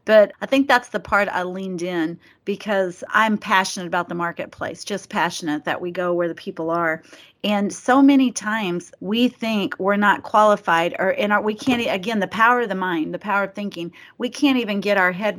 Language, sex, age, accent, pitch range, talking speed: English, female, 40-59, American, 180-210 Hz, 205 wpm